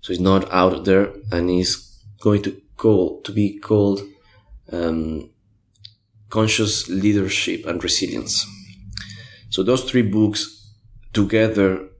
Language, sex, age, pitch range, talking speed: English, male, 30-49, 95-110 Hz, 115 wpm